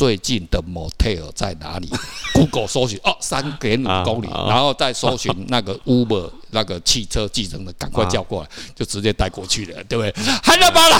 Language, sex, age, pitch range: Chinese, male, 50-69, 100-140 Hz